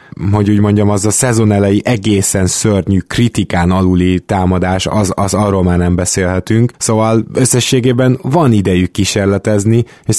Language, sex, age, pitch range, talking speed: Hungarian, male, 20-39, 95-110 Hz, 135 wpm